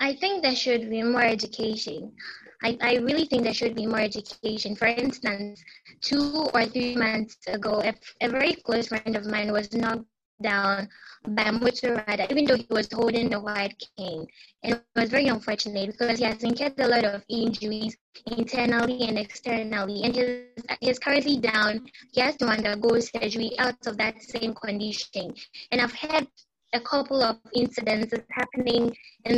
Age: 10-29